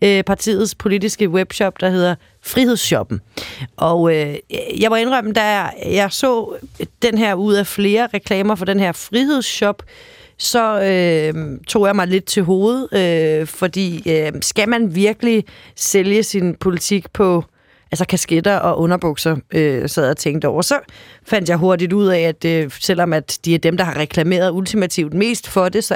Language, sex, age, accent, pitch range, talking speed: Danish, female, 30-49, native, 170-210 Hz, 170 wpm